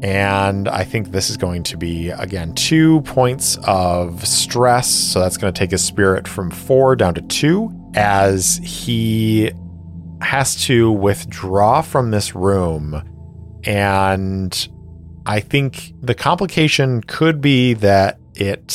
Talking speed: 135 wpm